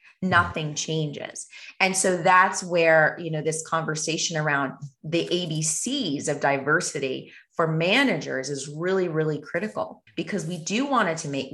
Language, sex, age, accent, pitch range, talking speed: English, female, 30-49, American, 155-200 Hz, 145 wpm